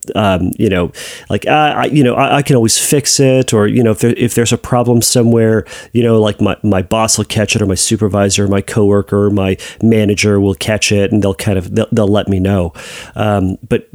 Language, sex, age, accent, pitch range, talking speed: English, male, 30-49, American, 100-125 Hz, 230 wpm